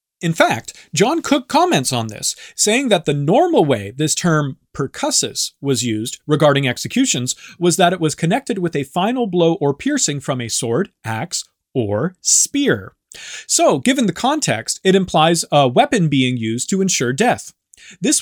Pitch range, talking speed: 135-200 Hz, 165 wpm